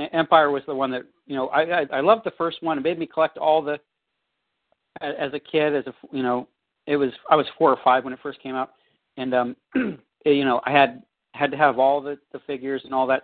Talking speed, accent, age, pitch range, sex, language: 255 wpm, American, 40-59, 120-150 Hz, male, English